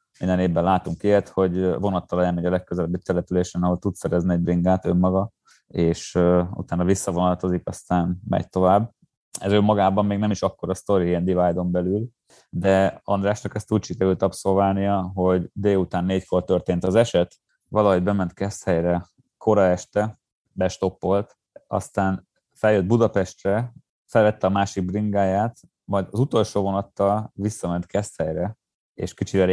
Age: 30-49